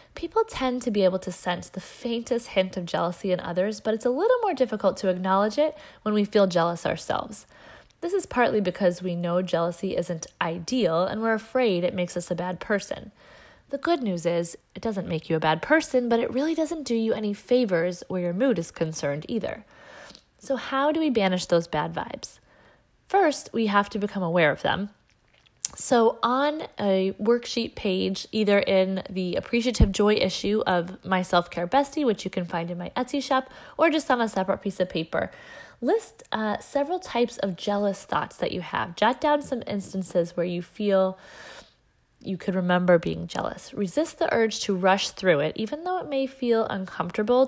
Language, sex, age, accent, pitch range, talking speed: English, female, 20-39, American, 180-250 Hz, 195 wpm